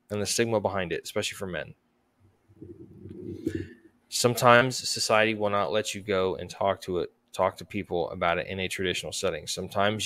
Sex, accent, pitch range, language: male, American, 100-120 Hz, English